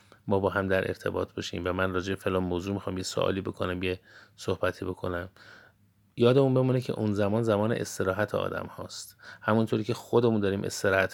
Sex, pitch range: male, 95-115 Hz